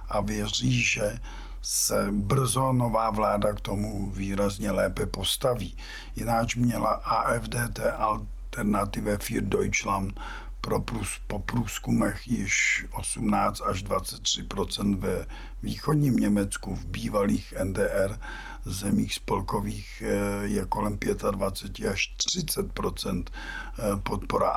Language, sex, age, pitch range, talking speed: Czech, male, 50-69, 100-125 Hz, 95 wpm